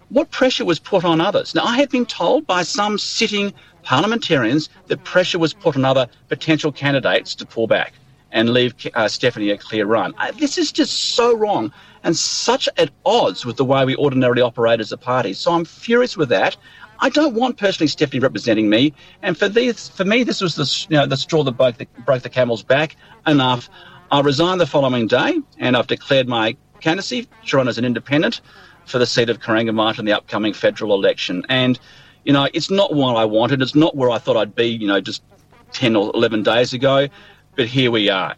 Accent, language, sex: Australian, English, male